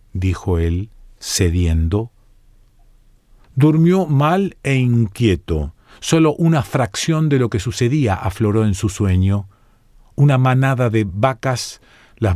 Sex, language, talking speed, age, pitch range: male, Spanish, 110 wpm, 40-59, 105-125 Hz